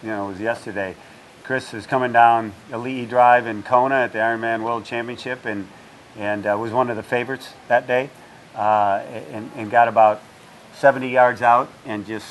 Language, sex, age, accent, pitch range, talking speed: English, male, 50-69, American, 115-135 Hz, 185 wpm